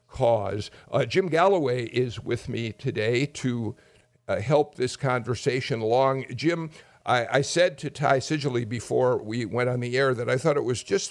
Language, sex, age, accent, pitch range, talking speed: English, male, 60-79, American, 120-150 Hz, 180 wpm